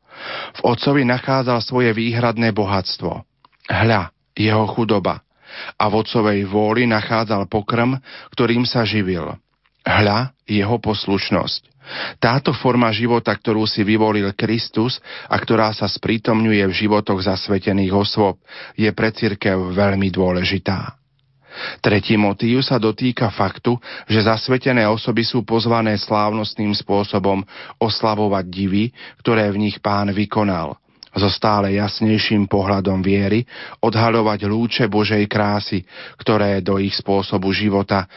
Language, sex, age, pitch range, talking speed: Slovak, male, 40-59, 100-115 Hz, 115 wpm